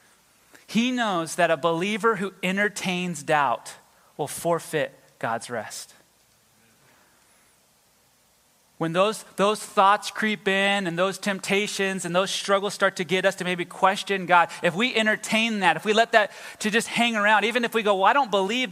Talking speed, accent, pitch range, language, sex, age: 165 wpm, American, 155-205 Hz, English, male, 30-49